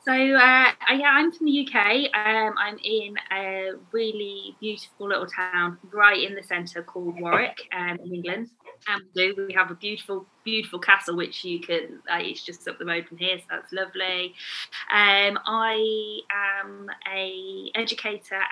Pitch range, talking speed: 180-230 Hz, 160 wpm